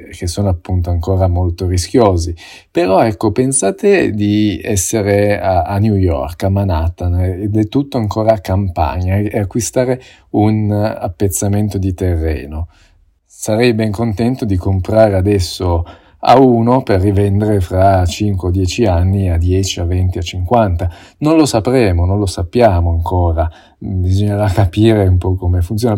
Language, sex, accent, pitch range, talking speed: Italian, male, native, 90-110 Hz, 145 wpm